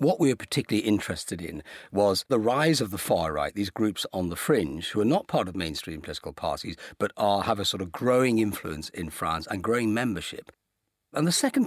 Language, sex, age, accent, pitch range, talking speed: English, male, 50-69, British, 95-140 Hz, 205 wpm